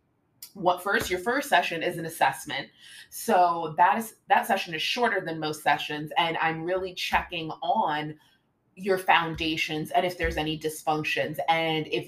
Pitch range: 155-185 Hz